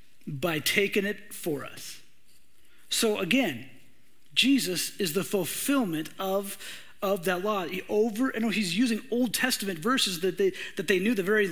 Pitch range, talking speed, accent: 165-215 Hz, 165 wpm, American